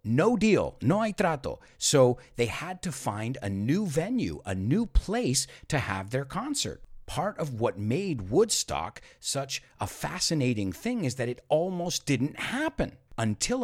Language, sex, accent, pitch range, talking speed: English, male, American, 100-165 Hz, 160 wpm